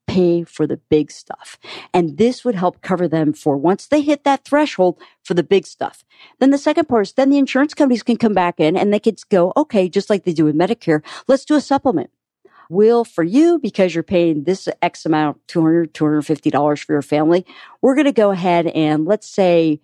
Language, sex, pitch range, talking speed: English, female, 160-235 Hz, 215 wpm